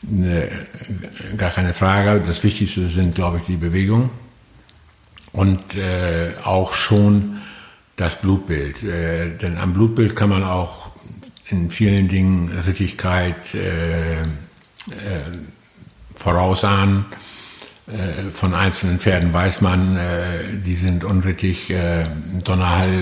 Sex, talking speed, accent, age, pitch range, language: male, 110 wpm, German, 60-79, 85-100 Hz, German